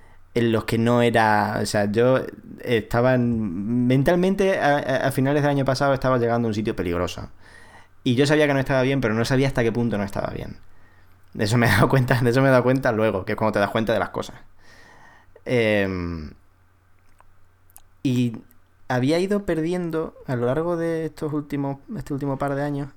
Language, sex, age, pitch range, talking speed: Spanish, male, 20-39, 105-135 Hz, 200 wpm